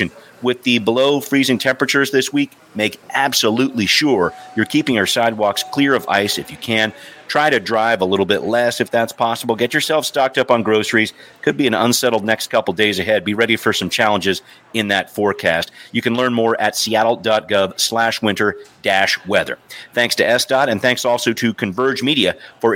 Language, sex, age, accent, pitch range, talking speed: English, male, 40-59, American, 105-125 Hz, 190 wpm